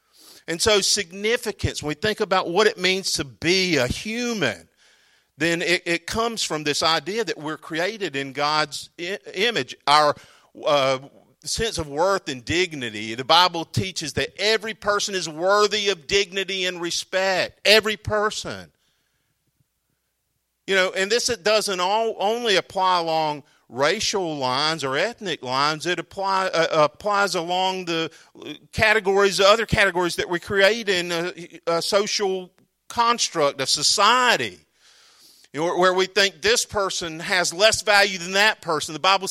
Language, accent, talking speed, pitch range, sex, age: English, American, 145 wpm, 155-200 Hz, male, 50-69